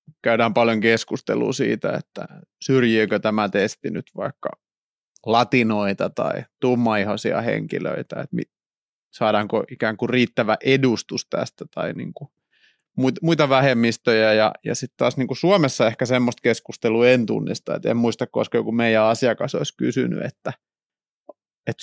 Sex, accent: male, native